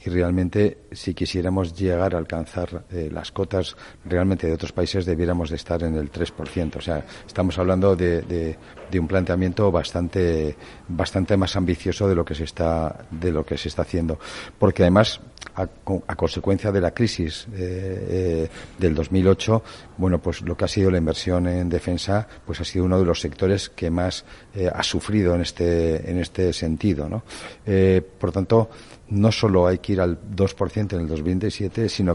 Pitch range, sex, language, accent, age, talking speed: 85-100 Hz, male, Spanish, Spanish, 50-69, 185 wpm